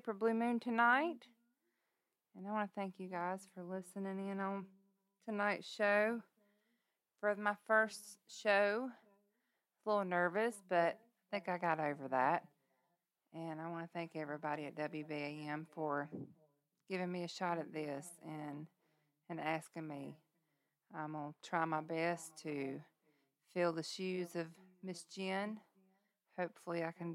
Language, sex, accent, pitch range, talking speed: English, female, American, 165-195 Hz, 140 wpm